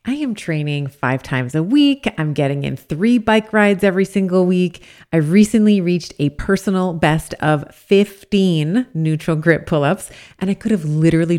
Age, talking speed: 30-49, 170 wpm